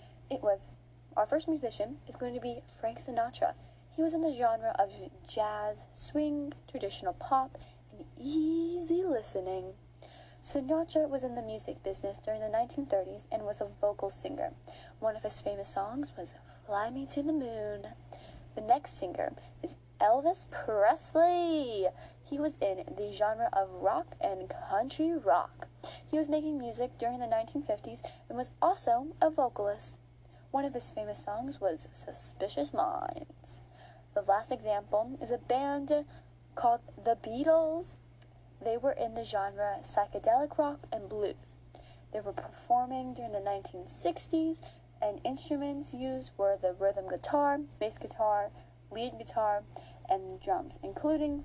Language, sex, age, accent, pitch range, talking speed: English, female, 20-39, American, 200-300 Hz, 145 wpm